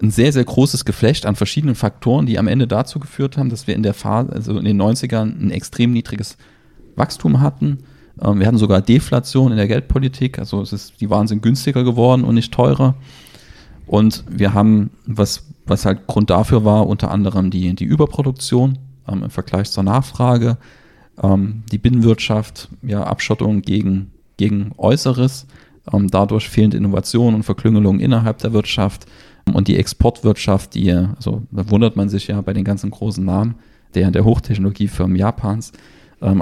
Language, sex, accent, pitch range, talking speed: German, male, German, 95-115 Hz, 170 wpm